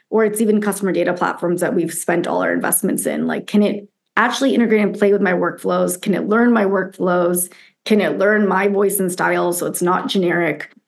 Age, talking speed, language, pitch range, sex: 20-39, 215 wpm, English, 180-225 Hz, female